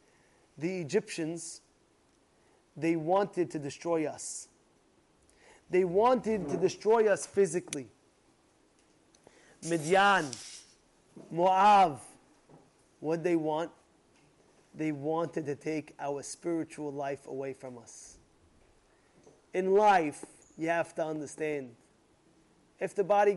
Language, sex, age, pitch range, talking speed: English, male, 30-49, 155-230 Hz, 95 wpm